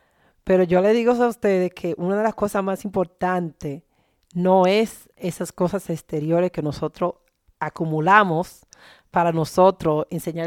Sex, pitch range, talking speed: female, 155-185 Hz, 140 wpm